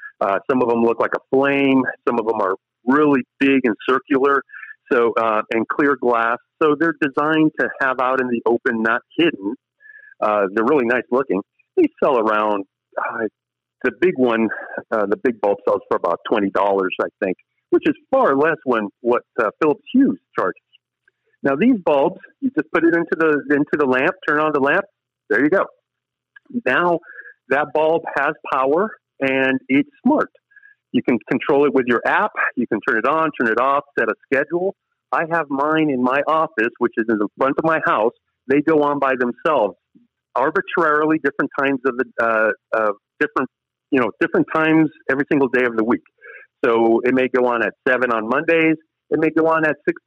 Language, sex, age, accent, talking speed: English, male, 50-69, American, 195 wpm